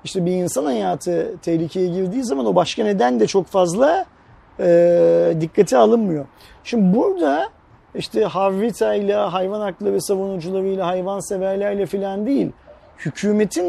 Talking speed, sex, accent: 130 wpm, male, native